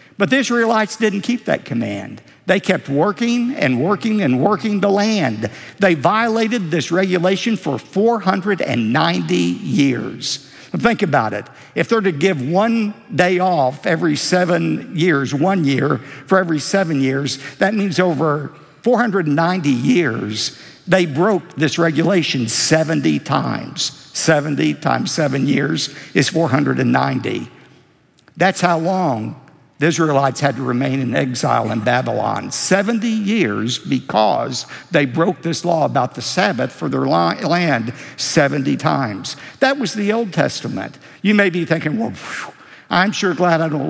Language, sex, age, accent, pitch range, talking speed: English, male, 60-79, American, 135-190 Hz, 140 wpm